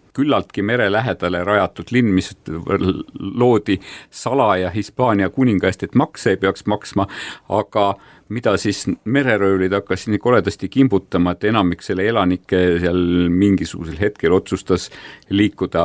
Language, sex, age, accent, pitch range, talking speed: English, male, 50-69, Finnish, 90-110 Hz, 115 wpm